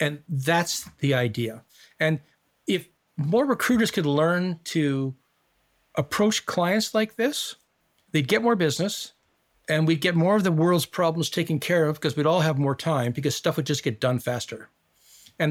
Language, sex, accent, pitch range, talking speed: English, male, American, 140-190 Hz, 170 wpm